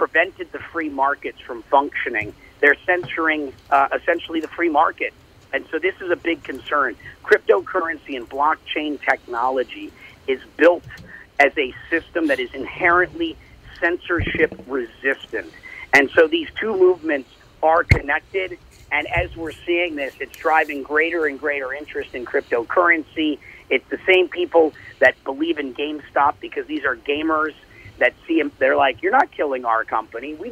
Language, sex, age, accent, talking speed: English, male, 50-69, American, 150 wpm